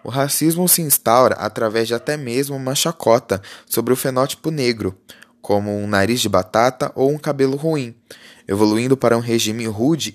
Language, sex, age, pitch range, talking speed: Portuguese, male, 10-29, 110-150 Hz, 165 wpm